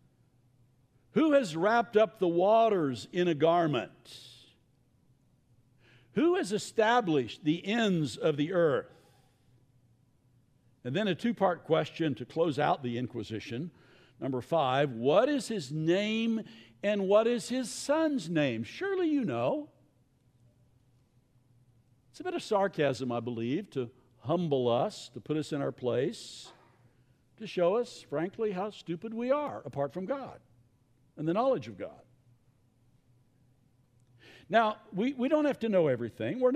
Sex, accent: male, American